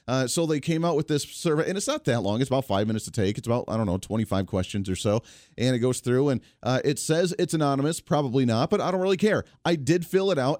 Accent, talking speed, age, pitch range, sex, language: American, 285 wpm, 30-49, 115-150 Hz, male, English